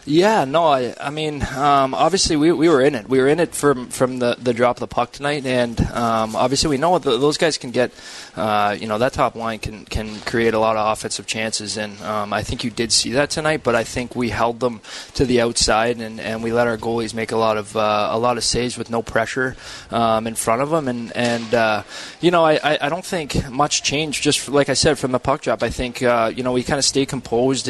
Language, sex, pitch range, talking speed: English, male, 115-135 Hz, 260 wpm